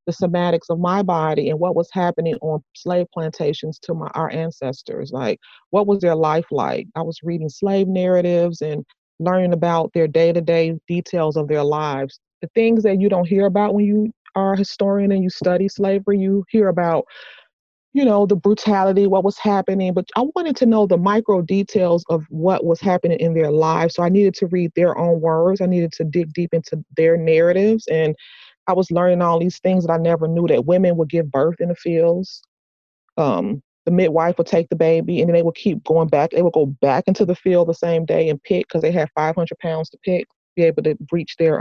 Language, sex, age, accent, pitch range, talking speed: English, female, 30-49, American, 165-200 Hz, 220 wpm